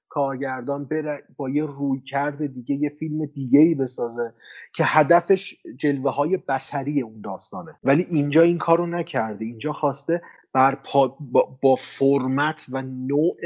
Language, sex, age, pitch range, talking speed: Persian, male, 30-49, 125-150 Hz, 135 wpm